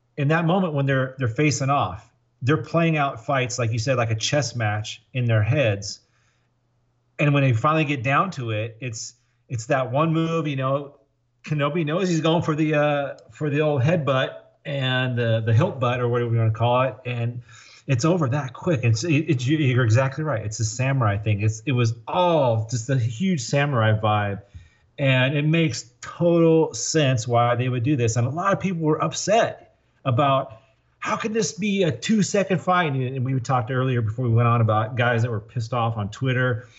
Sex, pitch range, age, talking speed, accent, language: male, 120-160 Hz, 30-49, 210 wpm, American, English